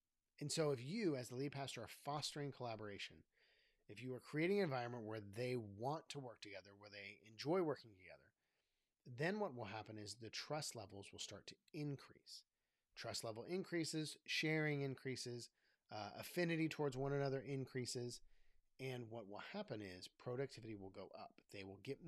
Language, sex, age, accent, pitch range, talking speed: English, male, 40-59, American, 110-145 Hz, 170 wpm